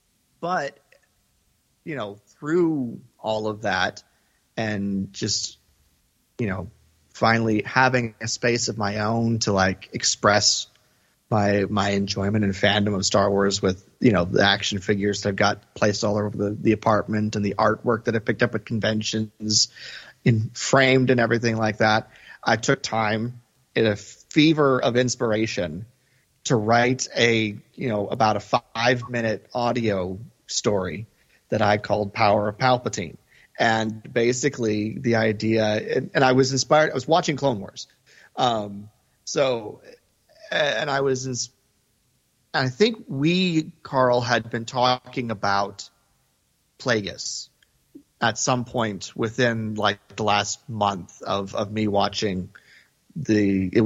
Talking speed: 140 wpm